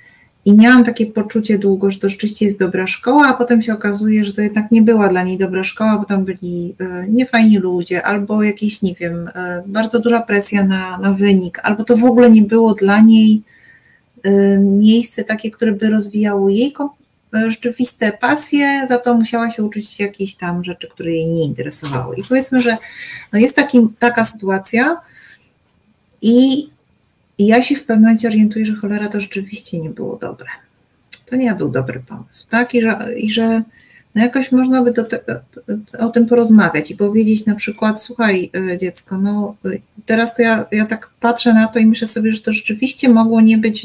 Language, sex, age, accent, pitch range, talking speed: Polish, female, 30-49, native, 195-235 Hz, 190 wpm